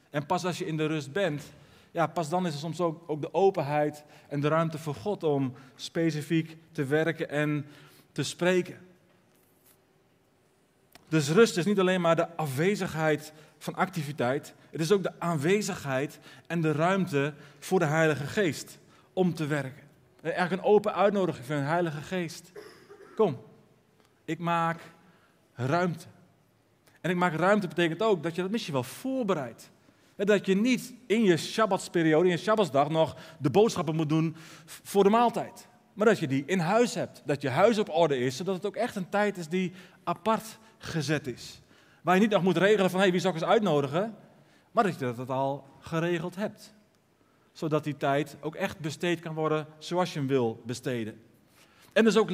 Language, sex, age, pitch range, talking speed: Dutch, male, 40-59, 150-190 Hz, 180 wpm